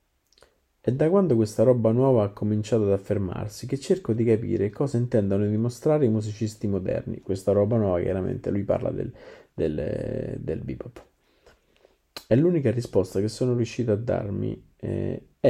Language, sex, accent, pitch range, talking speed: Italian, male, native, 110-130 Hz, 150 wpm